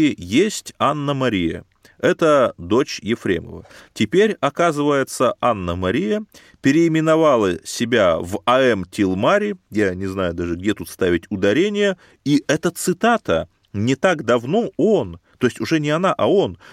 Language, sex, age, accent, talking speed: Russian, male, 30-49, native, 125 wpm